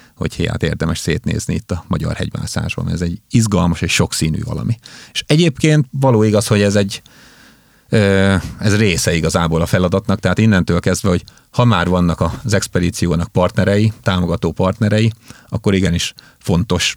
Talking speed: 145 wpm